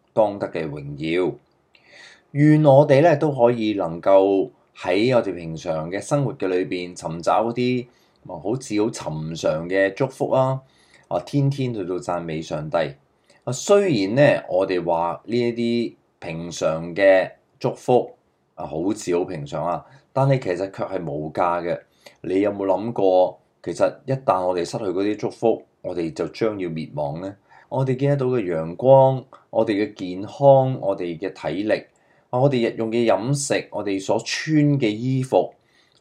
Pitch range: 90-135 Hz